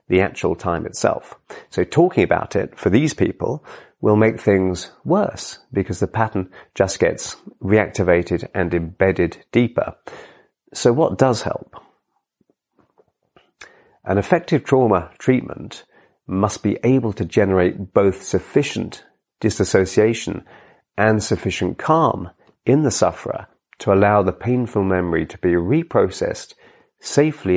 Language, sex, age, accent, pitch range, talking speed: English, male, 40-59, British, 90-120 Hz, 120 wpm